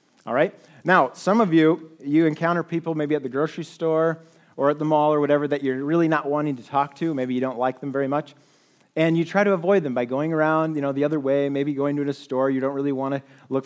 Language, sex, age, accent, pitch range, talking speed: English, male, 40-59, American, 140-170 Hz, 265 wpm